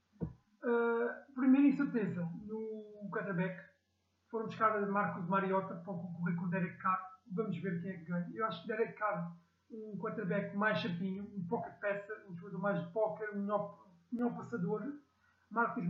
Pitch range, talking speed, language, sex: 175-215 Hz, 165 wpm, Portuguese, male